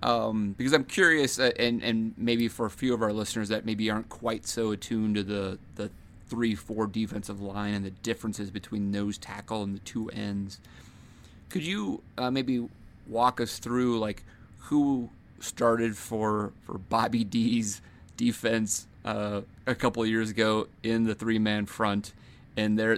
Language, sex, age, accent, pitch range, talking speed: English, male, 30-49, American, 100-115 Hz, 165 wpm